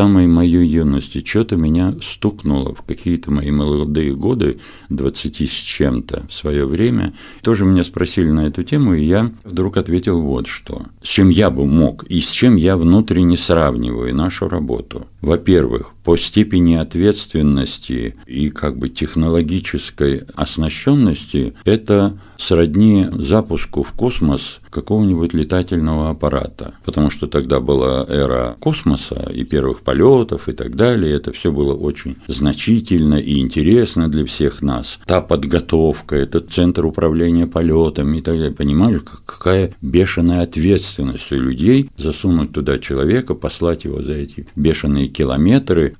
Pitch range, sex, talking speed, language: 75-95 Hz, male, 135 wpm, Russian